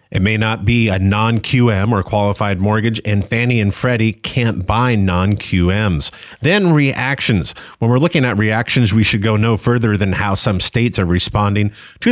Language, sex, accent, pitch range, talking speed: English, male, American, 95-120 Hz, 175 wpm